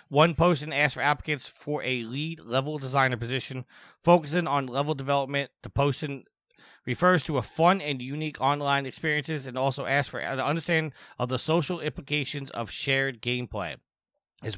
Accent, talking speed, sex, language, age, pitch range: American, 160 wpm, male, English, 30-49, 125-150 Hz